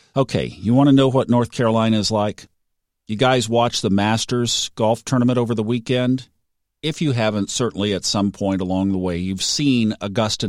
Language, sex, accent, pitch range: English, male, American, 95-125 Hz